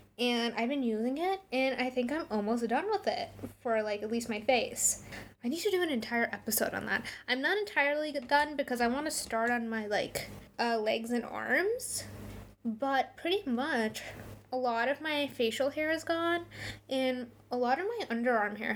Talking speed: 200 wpm